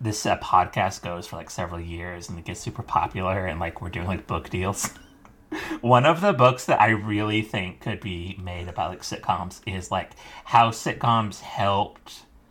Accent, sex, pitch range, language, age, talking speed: American, male, 90-115 Hz, English, 30-49, 185 wpm